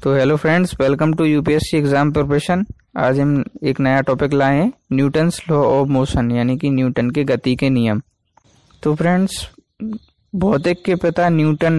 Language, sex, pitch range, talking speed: Hindi, male, 130-155 Hz, 165 wpm